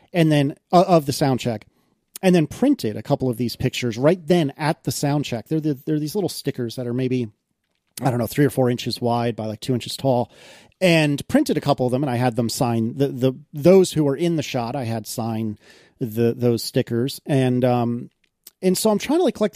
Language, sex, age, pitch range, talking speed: English, male, 40-59, 120-170 Hz, 235 wpm